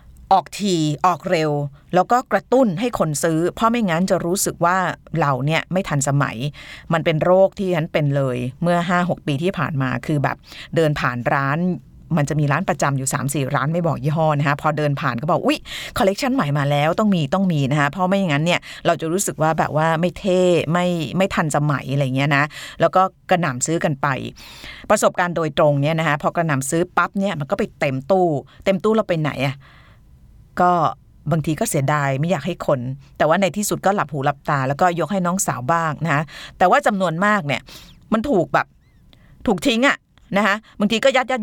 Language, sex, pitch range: Thai, female, 145-185 Hz